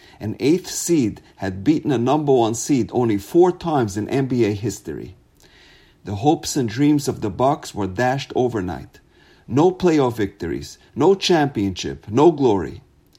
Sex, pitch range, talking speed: male, 100-150 Hz, 145 wpm